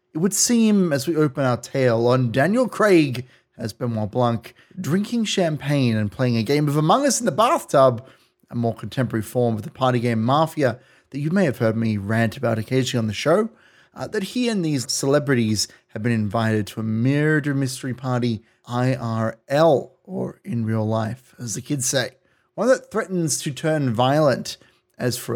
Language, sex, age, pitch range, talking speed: English, male, 30-49, 115-155 Hz, 185 wpm